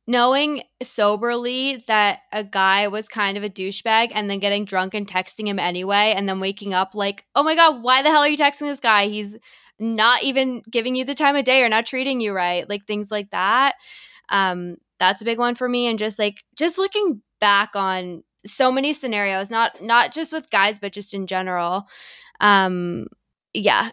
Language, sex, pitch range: English, female, 205-260 Hz